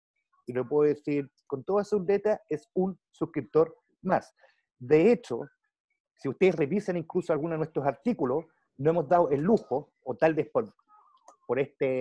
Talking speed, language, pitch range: 160 wpm, Spanish, 145-185 Hz